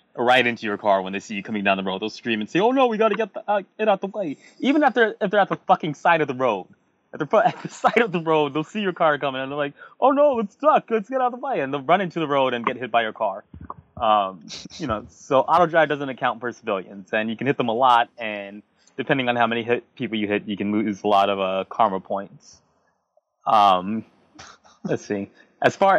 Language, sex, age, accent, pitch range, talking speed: English, male, 20-39, American, 105-145 Hz, 270 wpm